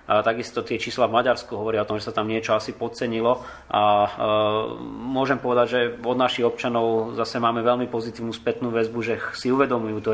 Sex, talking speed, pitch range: male, 195 wpm, 110-125 Hz